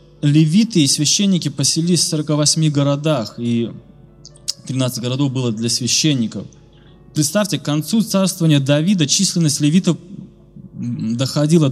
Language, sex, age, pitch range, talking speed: Russian, male, 20-39, 125-155 Hz, 110 wpm